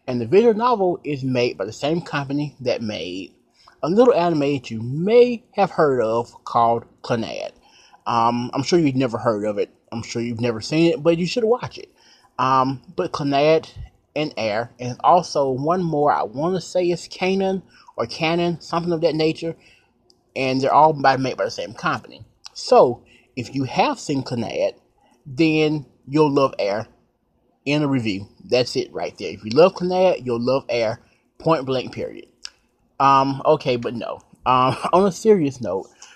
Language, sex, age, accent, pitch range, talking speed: English, male, 30-49, American, 125-175 Hz, 180 wpm